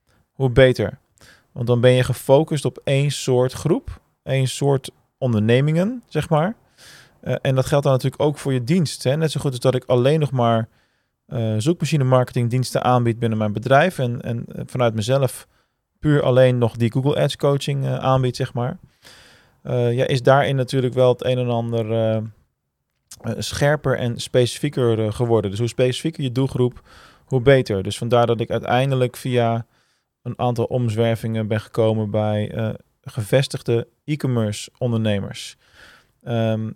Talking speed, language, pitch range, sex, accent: 160 wpm, Dutch, 115-135 Hz, male, Dutch